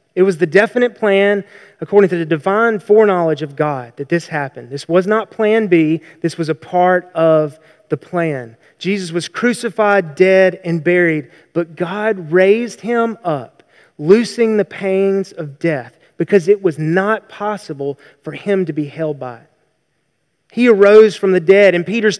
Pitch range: 165-205 Hz